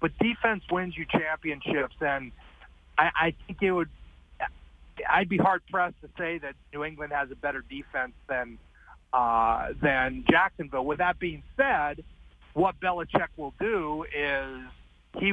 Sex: male